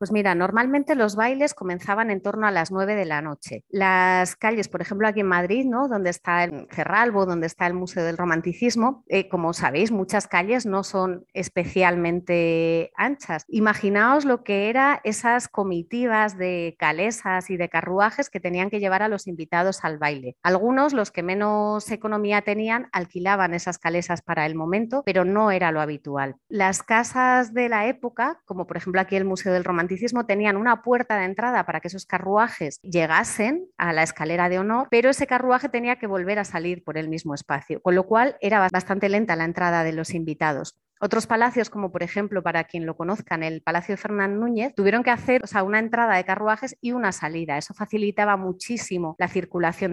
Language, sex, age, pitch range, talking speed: Spanish, female, 30-49, 175-220 Hz, 190 wpm